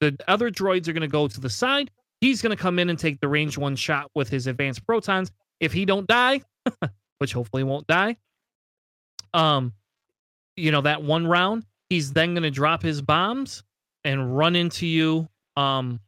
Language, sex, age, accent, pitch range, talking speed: English, male, 30-49, American, 140-180 Hz, 190 wpm